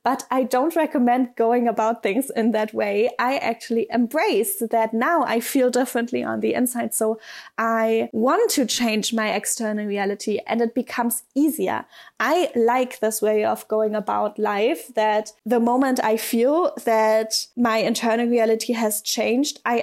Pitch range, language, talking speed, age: 220-250 Hz, English, 160 wpm, 10-29